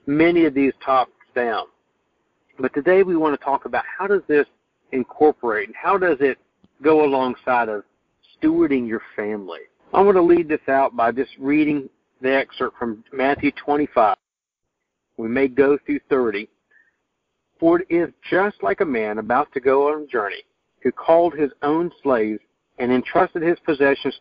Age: 50-69